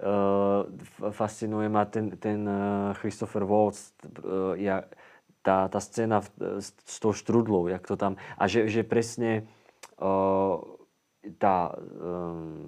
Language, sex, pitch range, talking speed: Slovak, male, 95-110 Hz, 125 wpm